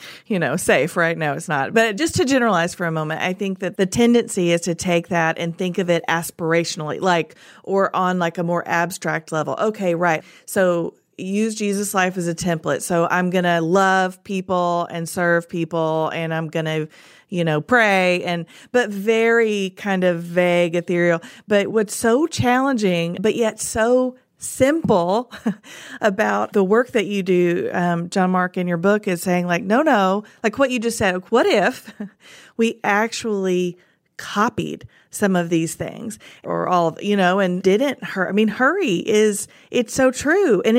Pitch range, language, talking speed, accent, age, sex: 175-215 Hz, English, 180 wpm, American, 40-59, female